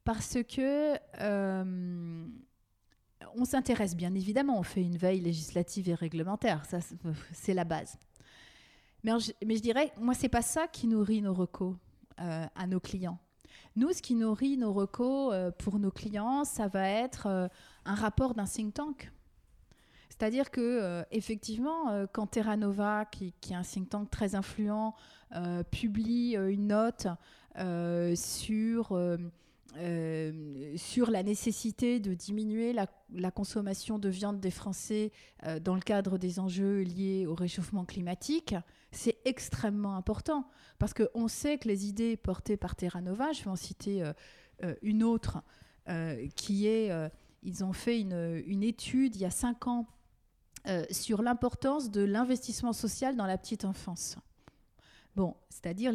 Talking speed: 160 wpm